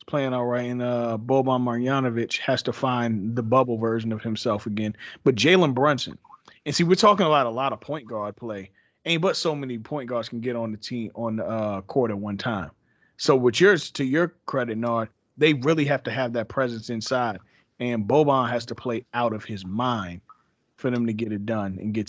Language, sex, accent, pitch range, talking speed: English, male, American, 110-130 Hz, 215 wpm